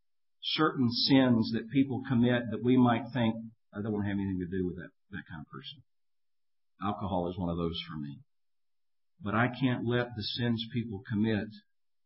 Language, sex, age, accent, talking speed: English, male, 50-69, American, 190 wpm